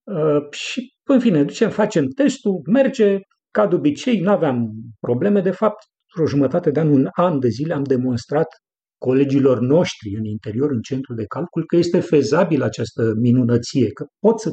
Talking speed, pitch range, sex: 175 wpm, 125-190 Hz, male